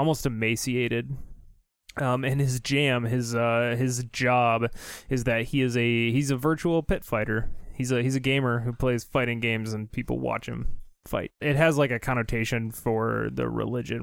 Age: 20-39